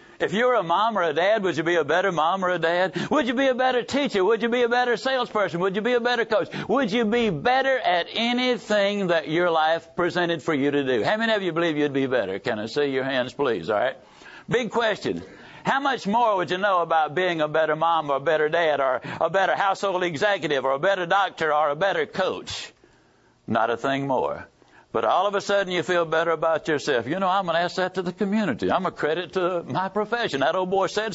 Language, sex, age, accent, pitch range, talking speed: English, male, 60-79, American, 160-215 Hz, 245 wpm